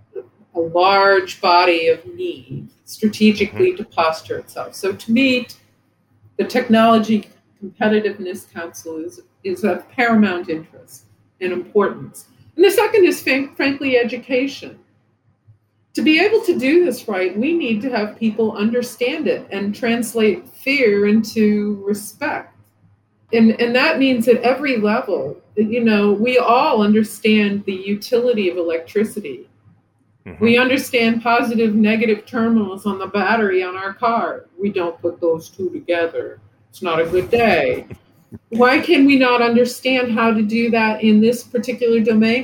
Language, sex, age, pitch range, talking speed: English, female, 40-59, 190-245 Hz, 140 wpm